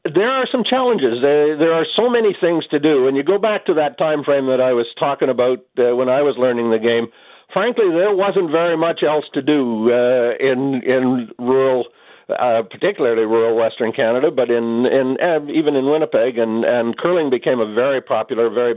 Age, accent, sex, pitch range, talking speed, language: 60-79, American, male, 120-150 Hz, 190 wpm, English